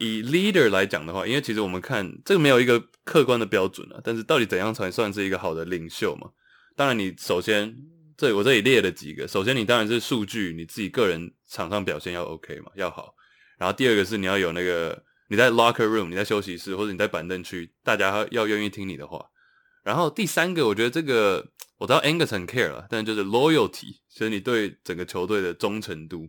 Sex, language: male, English